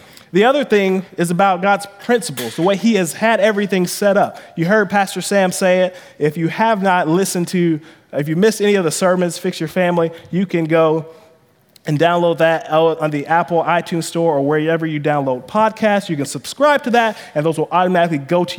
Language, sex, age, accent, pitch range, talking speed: English, male, 20-39, American, 160-200 Hz, 205 wpm